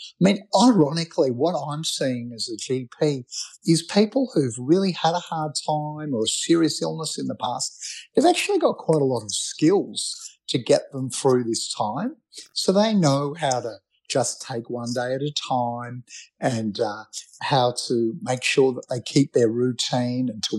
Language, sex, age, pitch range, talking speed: English, male, 50-69, 125-175 Hz, 185 wpm